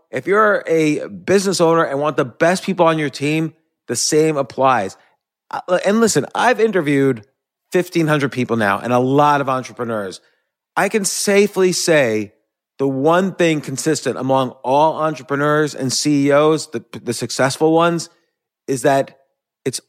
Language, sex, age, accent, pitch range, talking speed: English, male, 30-49, American, 130-160 Hz, 145 wpm